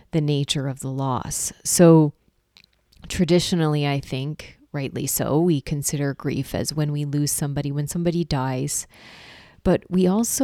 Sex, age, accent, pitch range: female, 30-49, American, 140-160 Hz